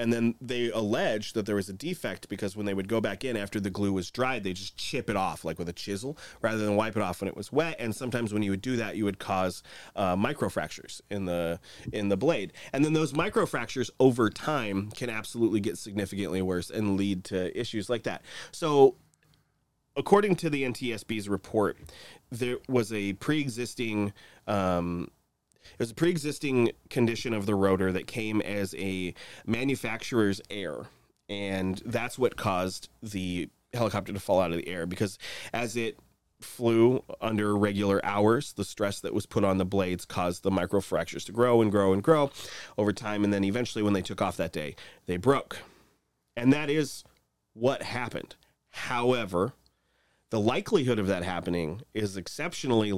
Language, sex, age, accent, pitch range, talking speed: English, male, 30-49, American, 95-120 Hz, 185 wpm